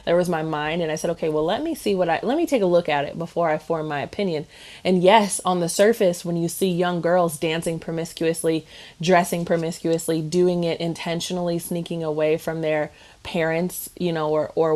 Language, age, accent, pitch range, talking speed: English, 20-39, American, 160-185 Hz, 210 wpm